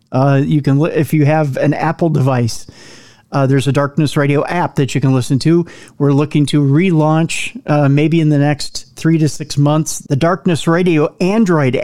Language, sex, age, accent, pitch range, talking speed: English, male, 40-59, American, 135-170 Hz, 190 wpm